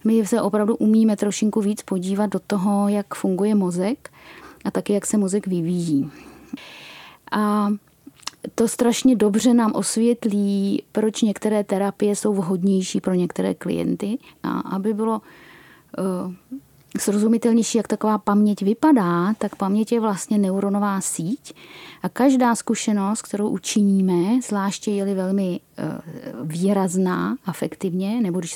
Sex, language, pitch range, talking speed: female, Czech, 195-235 Hz, 125 wpm